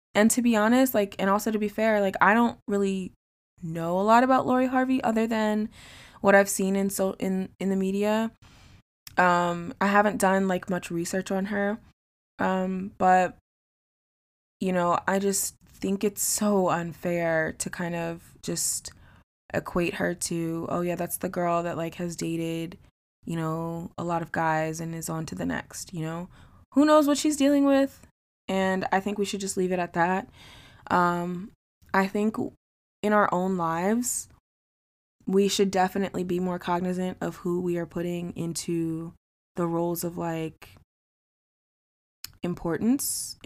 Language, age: English, 20-39